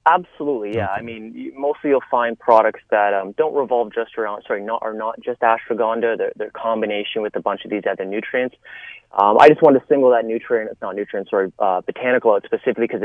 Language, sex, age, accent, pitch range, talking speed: English, male, 30-49, American, 110-145 Hz, 215 wpm